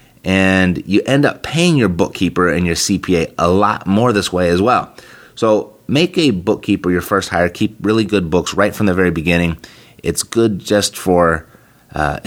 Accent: American